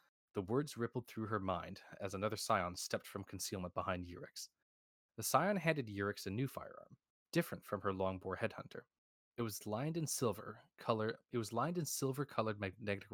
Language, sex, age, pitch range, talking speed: English, male, 20-39, 95-115 Hz, 175 wpm